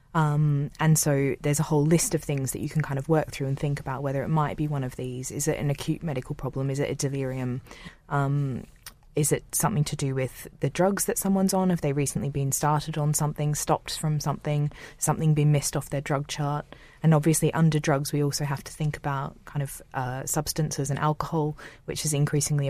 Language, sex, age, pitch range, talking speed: English, female, 20-39, 140-155 Hz, 220 wpm